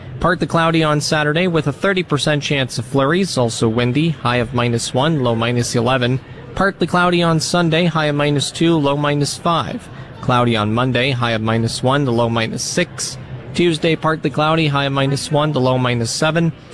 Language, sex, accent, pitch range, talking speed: English, male, American, 125-160 Hz, 185 wpm